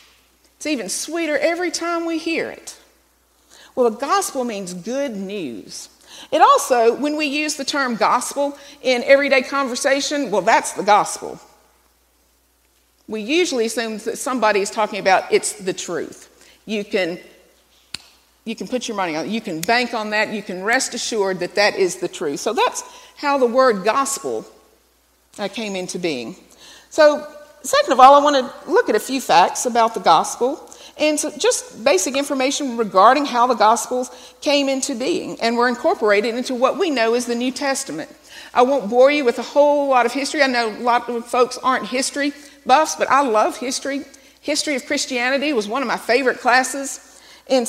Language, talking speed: English, 180 wpm